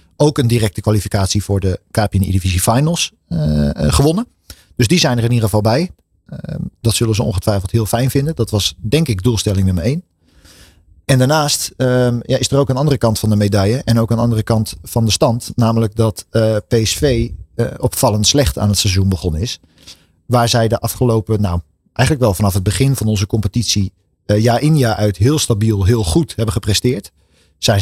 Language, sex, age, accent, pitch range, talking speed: Dutch, male, 40-59, Dutch, 100-125 Hz, 200 wpm